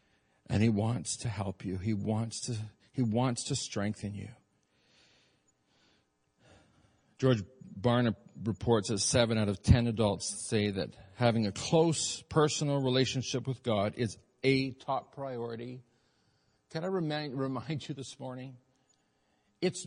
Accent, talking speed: American, 135 wpm